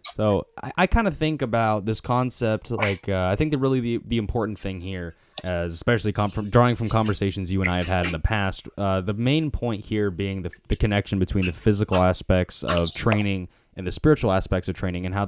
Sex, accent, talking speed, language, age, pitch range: male, American, 225 wpm, English, 10-29, 90-115 Hz